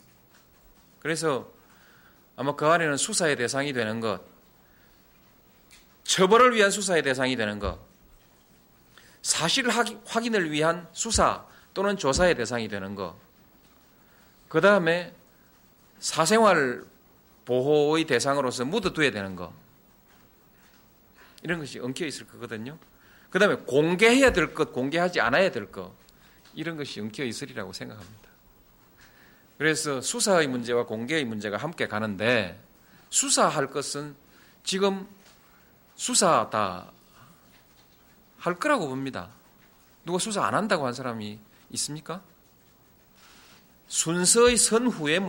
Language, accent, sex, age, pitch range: Korean, native, male, 40-59, 115-195 Hz